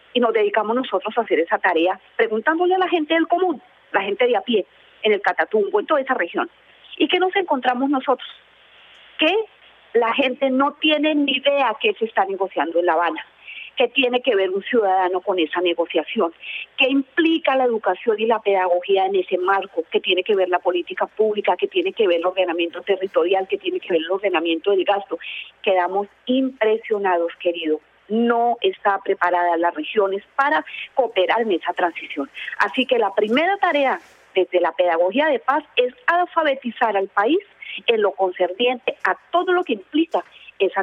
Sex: female